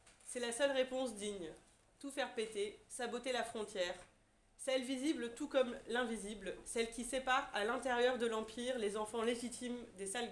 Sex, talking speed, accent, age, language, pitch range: female, 165 wpm, French, 30-49, French, 205-245 Hz